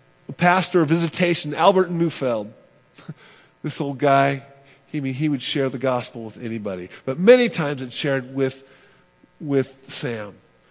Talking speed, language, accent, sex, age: 145 wpm, English, American, male, 50-69